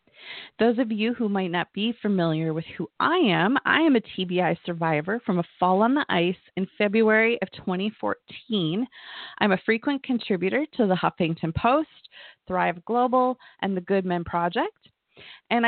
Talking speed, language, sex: 165 wpm, English, female